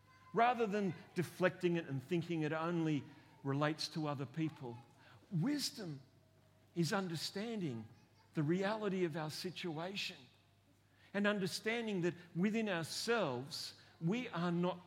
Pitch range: 125-180 Hz